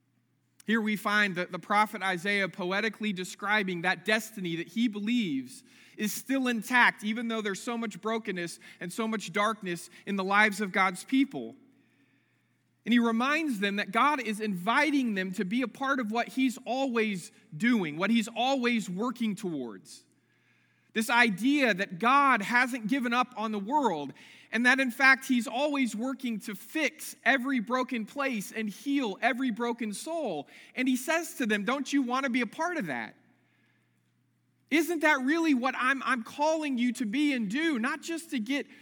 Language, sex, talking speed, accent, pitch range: English, male, 175 wpm, American, 215-270 Hz